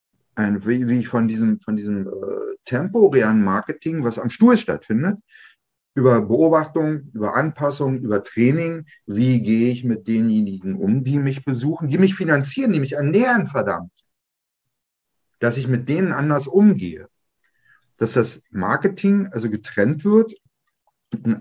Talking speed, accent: 135 wpm, German